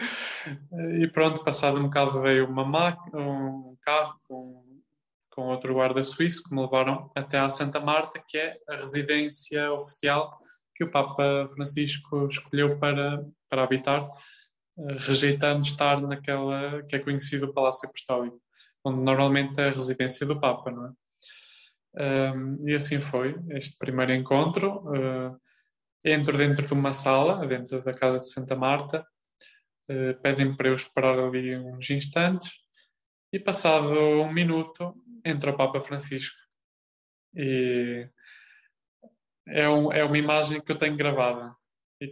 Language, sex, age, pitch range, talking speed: Portuguese, male, 20-39, 135-150 Hz, 135 wpm